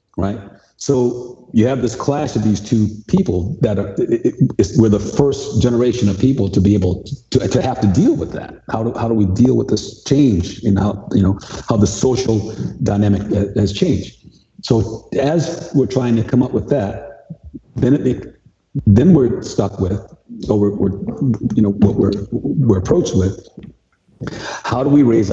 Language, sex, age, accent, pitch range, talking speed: English, male, 50-69, American, 100-130 Hz, 190 wpm